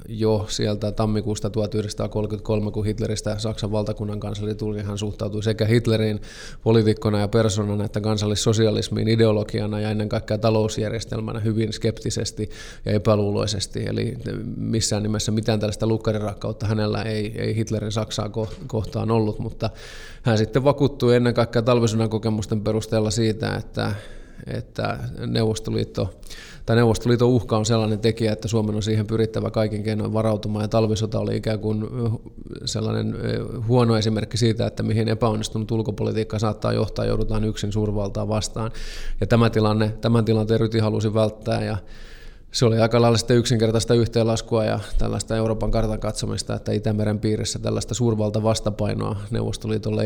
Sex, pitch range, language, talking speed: male, 105-115 Hz, Finnish, 135 wpm